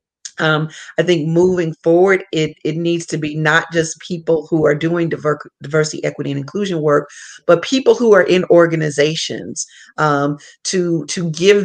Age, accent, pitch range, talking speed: 40-59, American, 150-180 Hz, 165 wpm